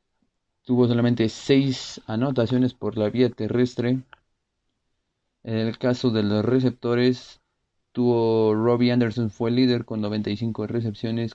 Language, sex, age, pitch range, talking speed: Spanish, male, 30-49, 110-125 Hz, 115 wpm